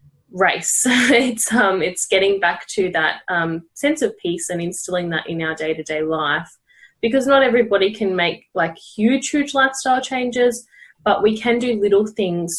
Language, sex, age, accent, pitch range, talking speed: English, female, 10-29, Australian, 175-210 Hz, 165 wpm